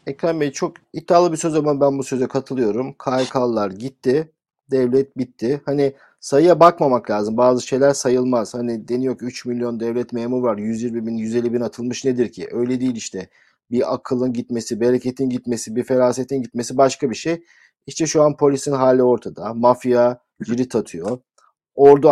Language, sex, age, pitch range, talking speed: Turkish, male, 50-69, 115-140 Hz, 165 wpm